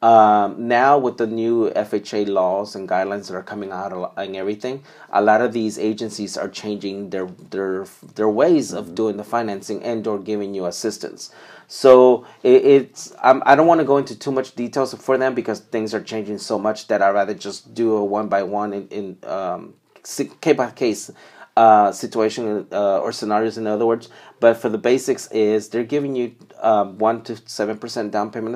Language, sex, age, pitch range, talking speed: Spanish, male, 30-49, 100-115 Hz, 195 wpm